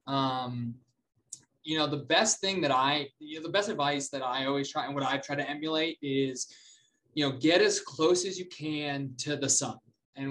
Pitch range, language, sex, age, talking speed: 125-150 Hz, English, male, 20-39, 210 wpm